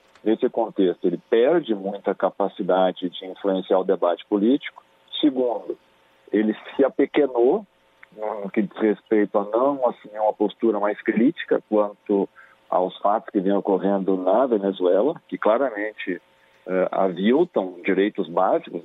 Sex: male